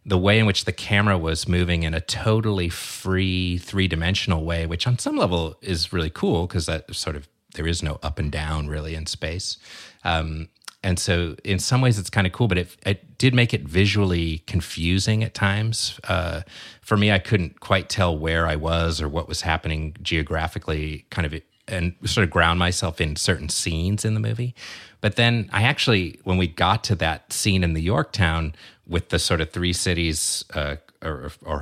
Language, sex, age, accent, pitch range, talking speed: English, male, 30-49, American, 80-95 Hz, 200 wpm